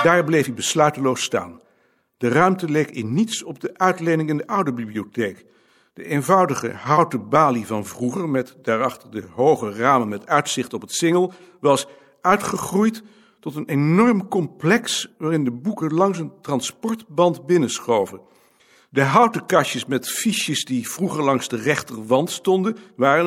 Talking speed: 150 wpm